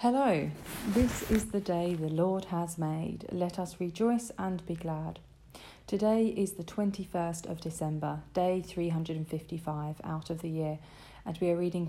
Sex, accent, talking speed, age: female, British, 155 wpm, 40-59